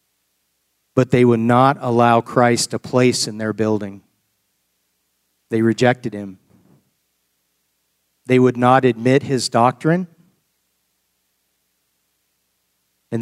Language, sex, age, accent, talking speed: English, male, 40-59, American, 95 wpm